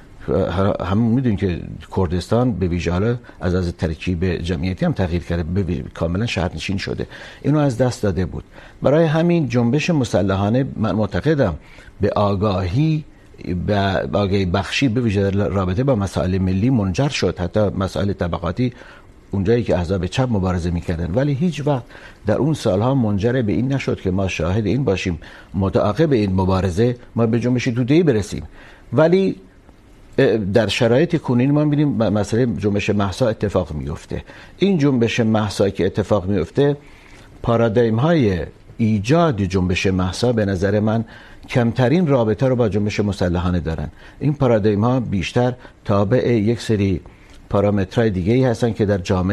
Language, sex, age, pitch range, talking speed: Urdu, male, 50-69, 95-125 Hz, 145 wpm